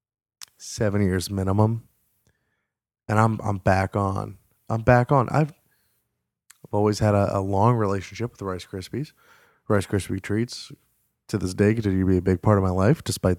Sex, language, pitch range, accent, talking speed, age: male, English, 100-140 Hz, American, 175 wpm, 20-39